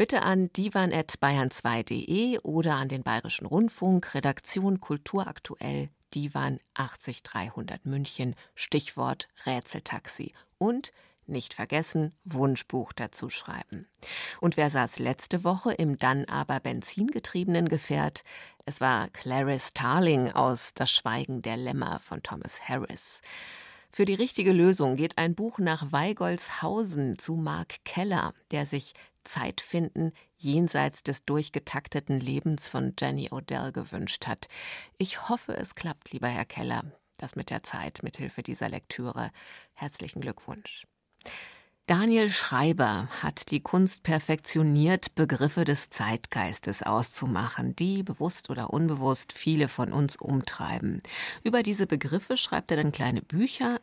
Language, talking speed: German, 125 wpm